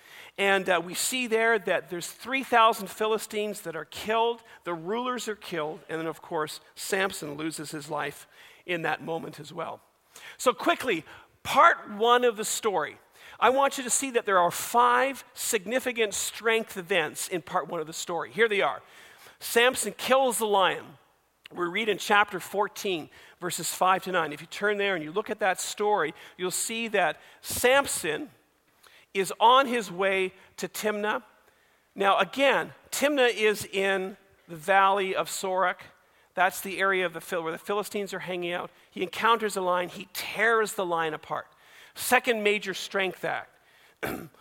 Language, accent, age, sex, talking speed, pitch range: English, American, 50-69, male, 170 wpm, 180-230 Hz